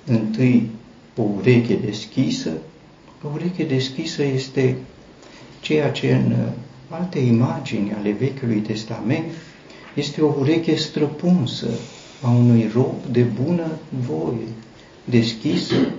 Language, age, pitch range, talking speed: Romanian, 60-79, 115-135 Hz, 100 wpm